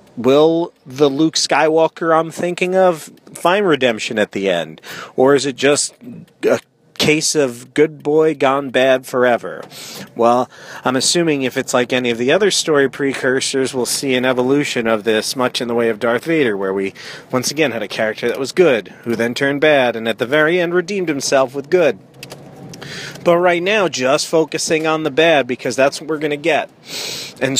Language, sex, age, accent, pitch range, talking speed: English, male, 40-59, American, 125-155 Hz, 190 wpm